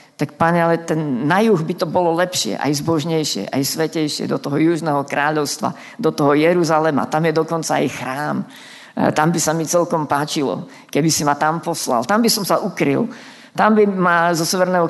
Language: Slovak